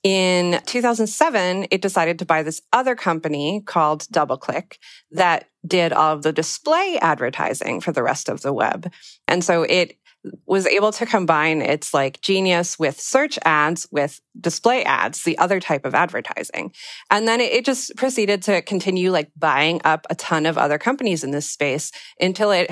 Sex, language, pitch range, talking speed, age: female, English, 155-195 Hz, 170 wpm, 30-49